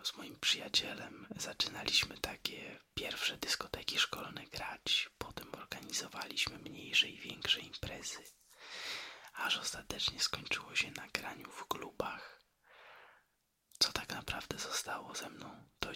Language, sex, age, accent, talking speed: Polish, male, 20-39, native, 115 wpm